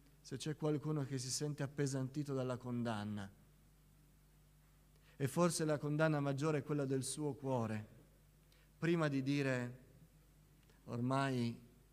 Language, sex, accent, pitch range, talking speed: Italian, male, native, 125-155 Hz, 115 wpm